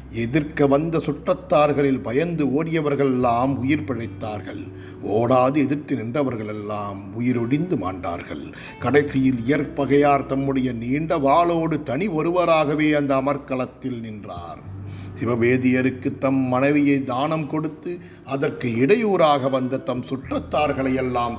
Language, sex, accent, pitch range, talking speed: Tamil, male, native, 115-145 Hz, 95 wpm